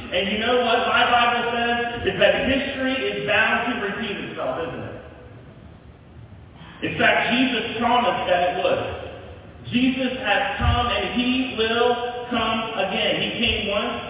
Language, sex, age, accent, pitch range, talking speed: English, male, 40-59, American, 225-260 Hz, 150 wpm